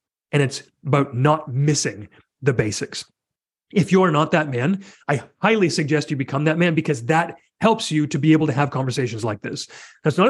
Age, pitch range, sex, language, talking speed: 30-49, 145-180 Hz, male, English, 190 wpm